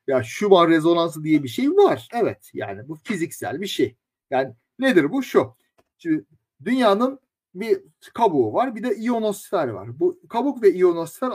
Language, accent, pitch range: Turkish, native, 150-235 Hz